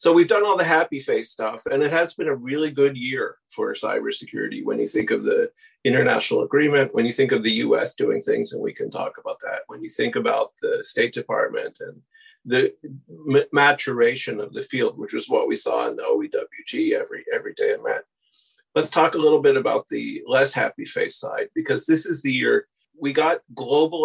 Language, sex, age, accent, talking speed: English, male, 40-59, American, 210 wpm